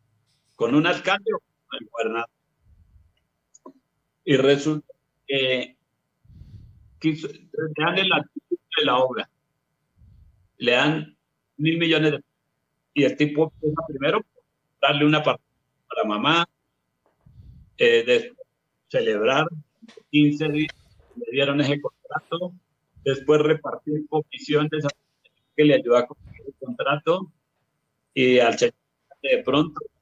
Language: Spanish